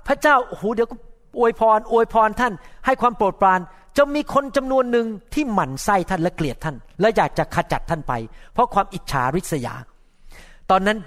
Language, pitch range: Thai, 170-235 Hz